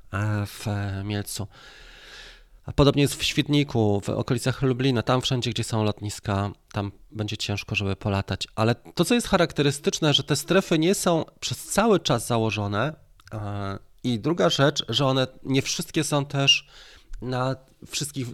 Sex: male